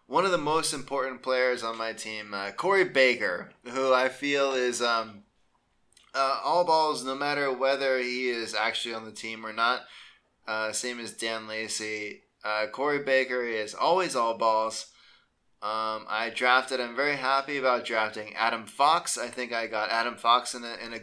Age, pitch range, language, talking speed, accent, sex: 20-39, 110-140 Hz, English, 175 wpm, American, male